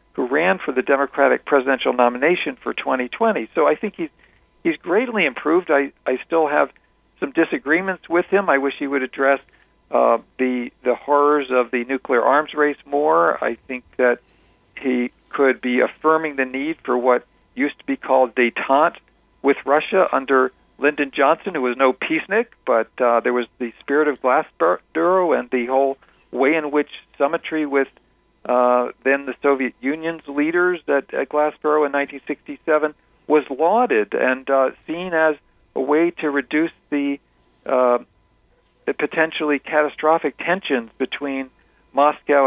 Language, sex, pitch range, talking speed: English, male, 130-160 Hz, 155 wpm